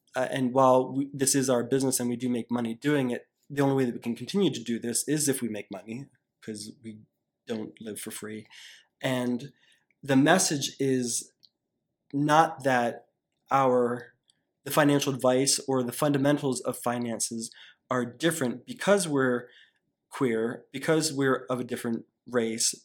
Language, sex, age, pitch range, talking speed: English, male, 20-39, 120-135 Hz, 165 wpm